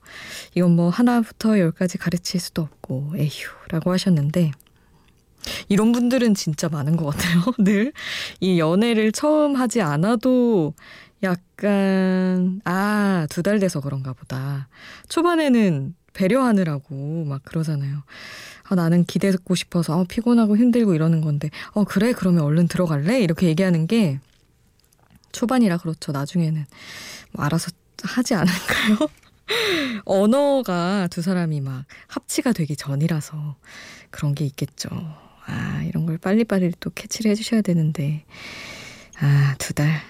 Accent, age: native, 20-39